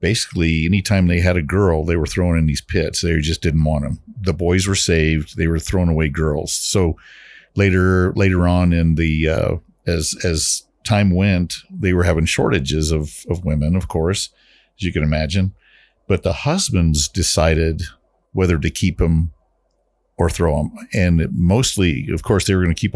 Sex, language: male, English